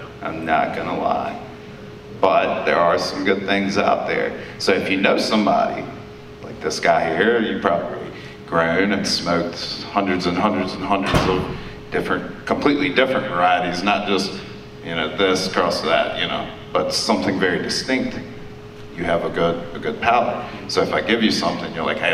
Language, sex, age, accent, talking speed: English, male, 30-49, American, 175 wpm